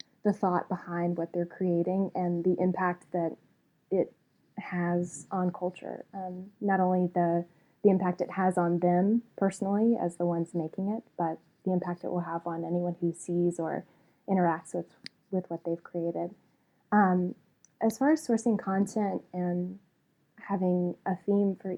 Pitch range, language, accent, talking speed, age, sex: 175-195 Hz, English, American, 160 wpm, 10-29, female